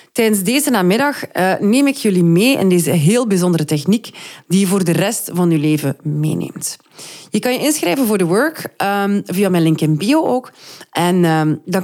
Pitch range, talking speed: 165-220 Hz, 190 wpm